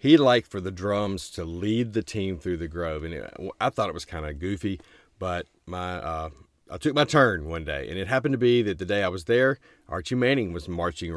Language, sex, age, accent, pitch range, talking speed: English, male, 40-59, American, 90-115 Hz, 240 wpm